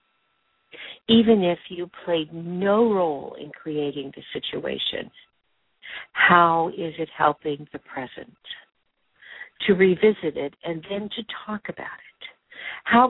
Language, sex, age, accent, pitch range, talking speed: English, female, 60-79, American, 155-210 Hz, 120 wpm